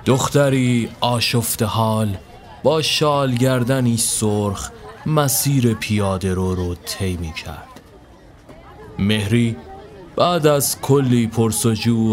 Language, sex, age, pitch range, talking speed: Persian, male, 30-49, 100-135 Hz, 95 wpm